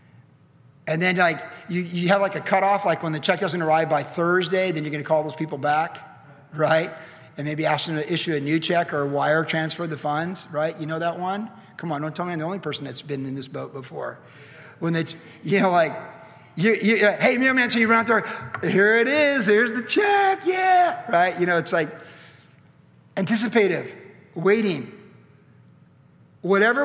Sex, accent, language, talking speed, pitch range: male, American, English, 200 wpm, 155-200 Hz